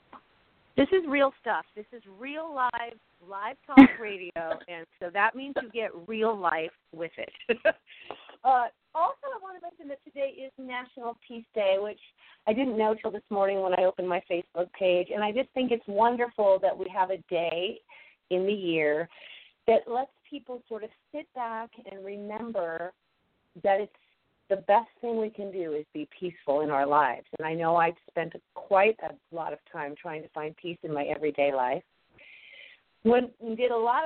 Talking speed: 185 wpm